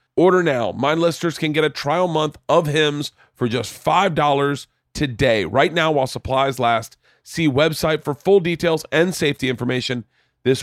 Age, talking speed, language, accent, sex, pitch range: 40-59, 165 wpm, English, American, male, 125-180 Hz